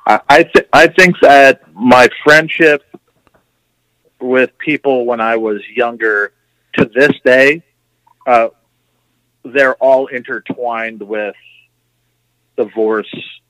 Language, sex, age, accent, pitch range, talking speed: English, male, 40-59, American, 110-125 Hz, 100 wpm